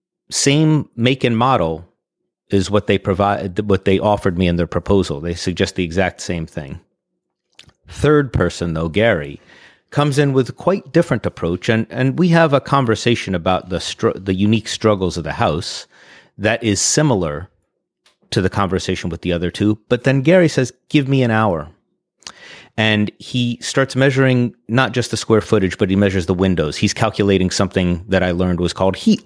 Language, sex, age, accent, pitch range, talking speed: English, male, 30-49, American, 95-125 Hz, 180 wpm